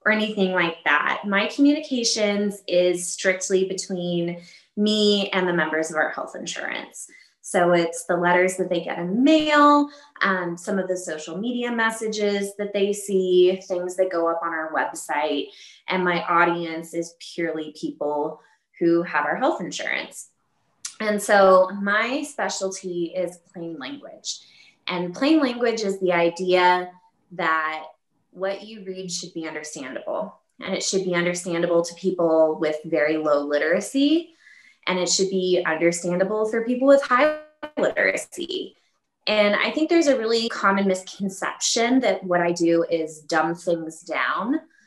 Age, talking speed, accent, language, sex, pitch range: 20-39, 150 wpm, American, English, female, 170-225 Hz